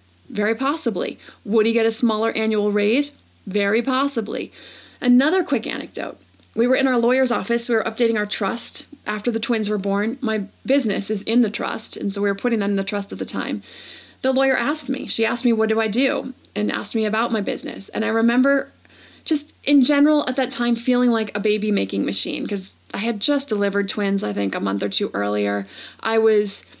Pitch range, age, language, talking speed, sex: 210-260 Hz, 30-49, English, 215 wpm, female